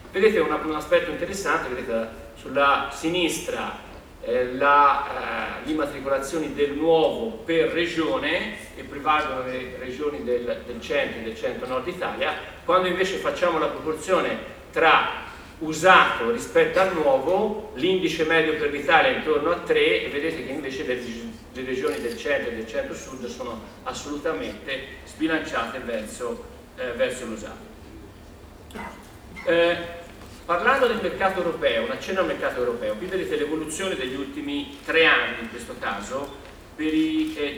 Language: Italian